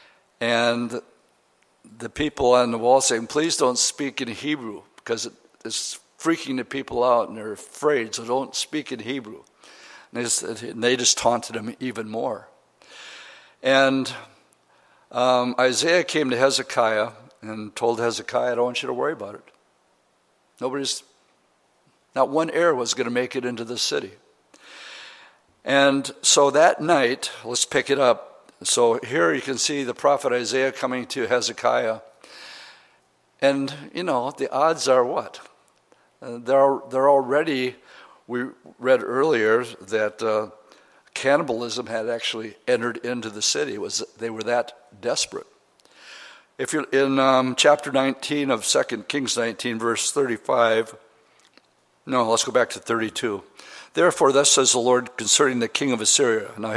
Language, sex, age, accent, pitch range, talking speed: English, male, 60-79, American, 120-140 Hz, 145 wpm